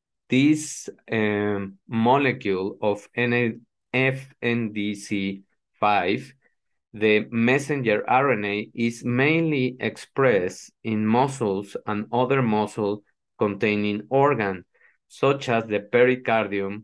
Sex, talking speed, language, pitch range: male, 75 wpm, English, 105-130 Hz